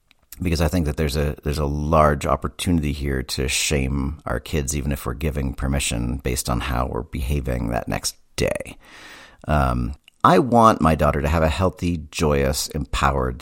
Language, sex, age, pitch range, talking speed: English, male, 50-69, 70-95 Hz, 175 wpm